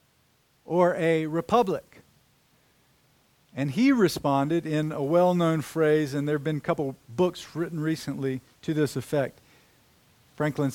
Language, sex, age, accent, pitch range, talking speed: English, male, 50-69, American, 130-175 Hz, 135 wpm